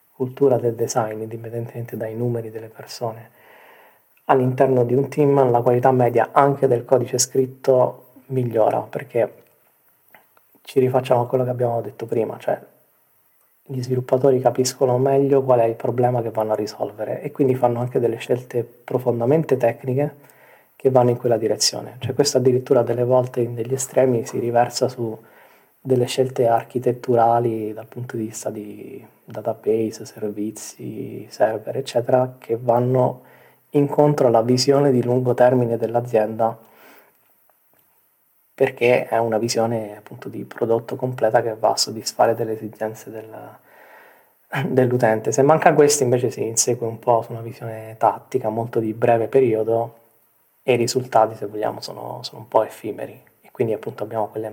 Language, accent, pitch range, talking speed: Italian, native, 115-130 Hz, 145 wpm